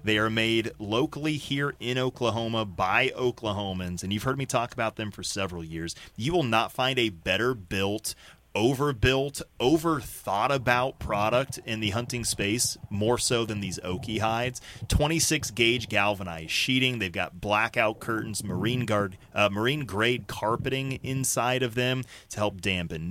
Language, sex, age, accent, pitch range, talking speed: English, male, 30-49, American, 100-120 Hz, 160 wpm